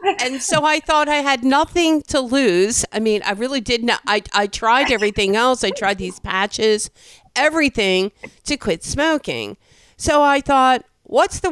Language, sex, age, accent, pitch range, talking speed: English, female, 50-69, American, 195-275 Hz, 165 wpm